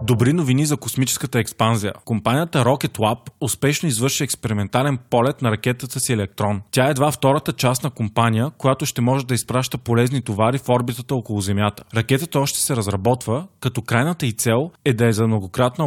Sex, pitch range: male, 115-140 Hz